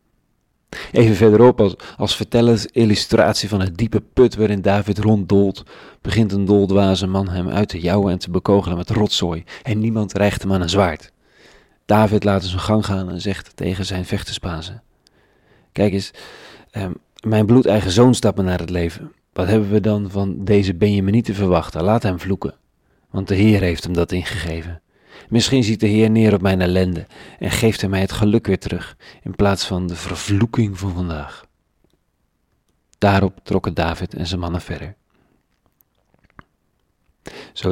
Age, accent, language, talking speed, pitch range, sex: 40-59, Dutch, Dutch, 170 wpm, 90-105 Hz, male